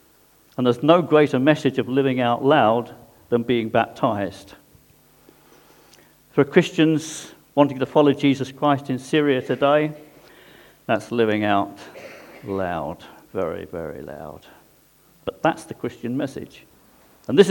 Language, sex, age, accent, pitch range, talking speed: English, male, 50-69, British, 105-150 Hz, 125 wpm